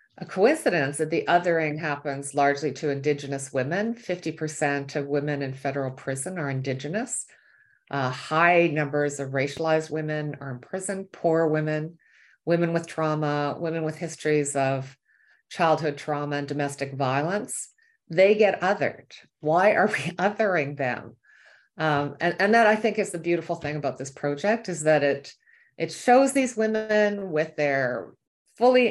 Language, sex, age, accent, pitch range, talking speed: English, female, 50-69, American, 150-200 Hz, 150 wpm